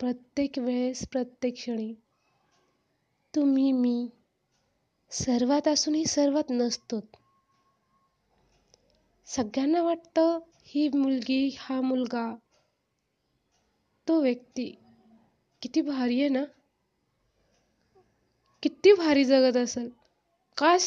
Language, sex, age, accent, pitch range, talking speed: Marathi, female, 20-39, native, 250-335 Hz, 80 wpm